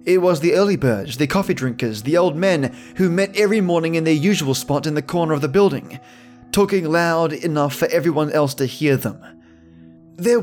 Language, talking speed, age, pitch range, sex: English, 200 wpm, 20-39, 130-170 Hz, male